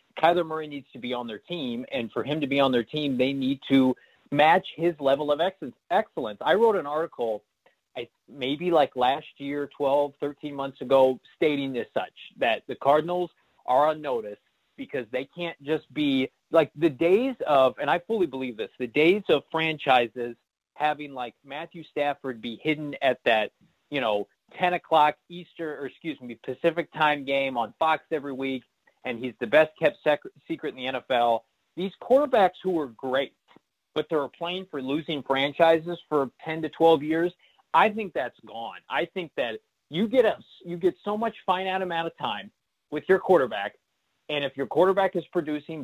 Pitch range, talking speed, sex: 135-170 Hz, 180 wpm, male